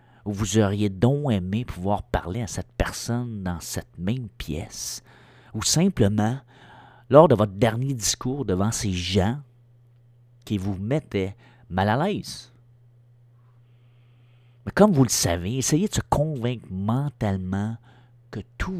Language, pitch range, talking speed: French, 105-125 Hz, 130 wpm